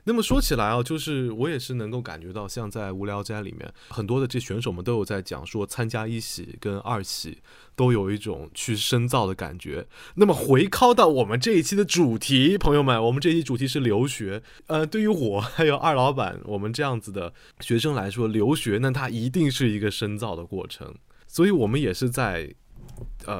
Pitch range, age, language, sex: 100-130 Hz, 20-39, Chinese, male